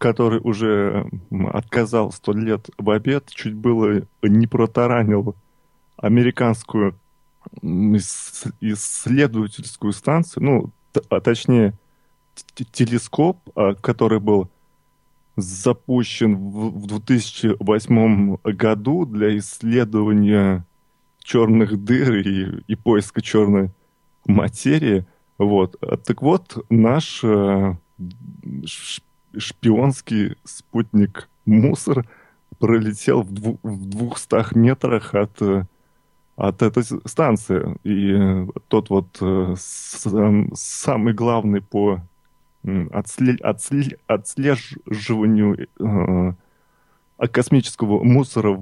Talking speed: 75 wpm